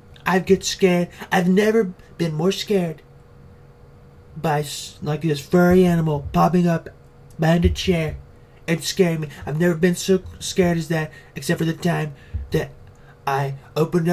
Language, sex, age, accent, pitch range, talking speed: English, male, 30-49, American, 145-170 Hz, 150 wpm